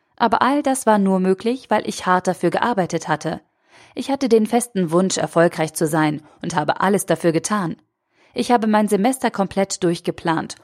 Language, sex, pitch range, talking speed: German, female, 170-205 Hz, 175 wpm